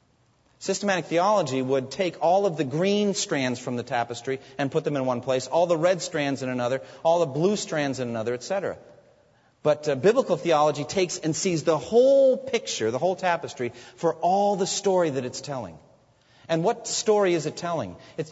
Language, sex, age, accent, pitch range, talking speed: English, male, 40-59, American, 140-190 Hz, 190 wpm